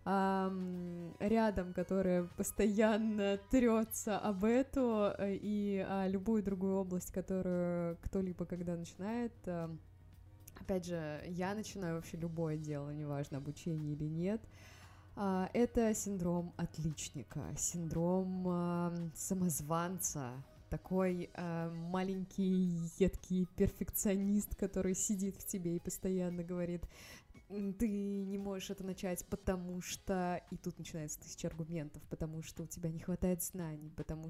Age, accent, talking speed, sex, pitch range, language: 20-39, native, 105 wpm, female, 165-195 Hz, Russian